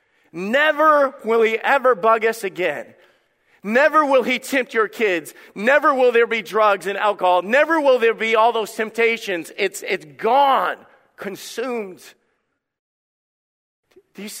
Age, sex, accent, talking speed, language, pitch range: 40-59, male, American, 135 wpm, English, 180-235 Hz